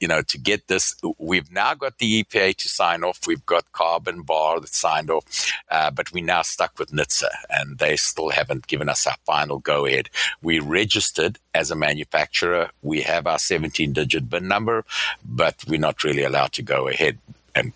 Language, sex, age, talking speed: English, male, 60-79, 200 wpm